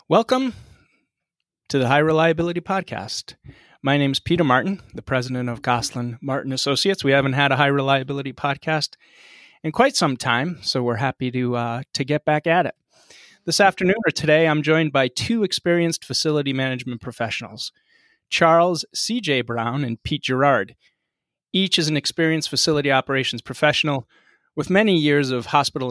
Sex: male